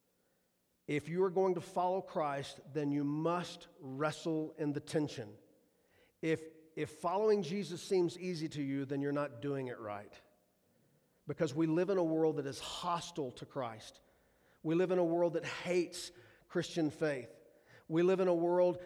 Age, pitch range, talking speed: 40-59, 135-170 Hz, 170 wpm